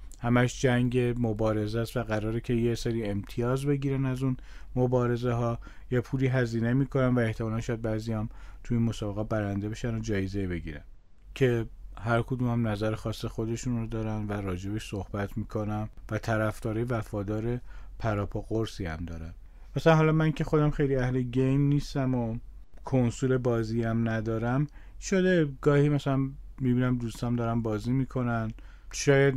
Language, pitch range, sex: Persian, 110-130 Hz, male